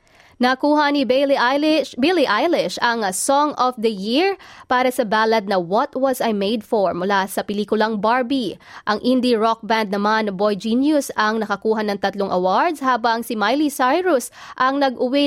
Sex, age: female, 20-39